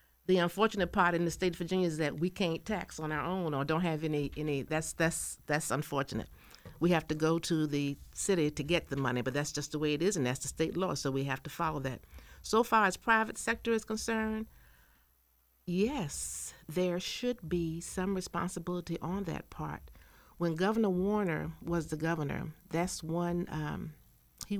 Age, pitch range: 50-69, 145-185 Hz